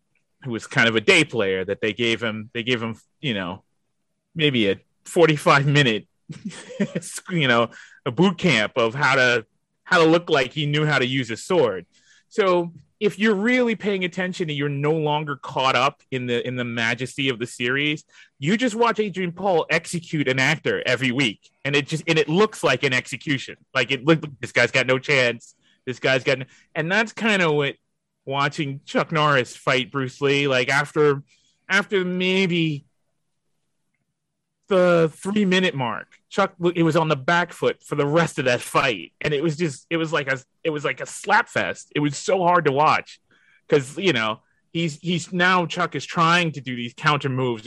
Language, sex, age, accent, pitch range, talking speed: English, male, 30-49, American, 130-175 Hz, 195 wpm